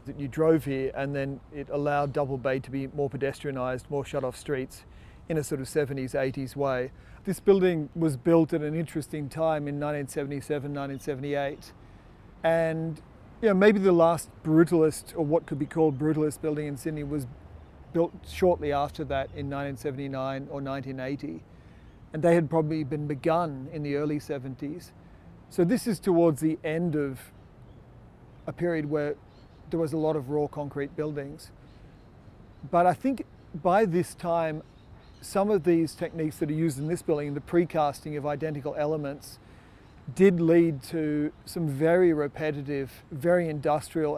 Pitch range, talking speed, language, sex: 140-165 Hz, 160 wpm, English, male